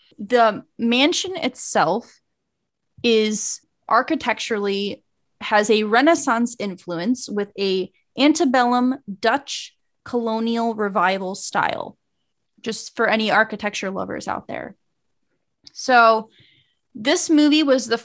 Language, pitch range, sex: English, 210-255 Hz, female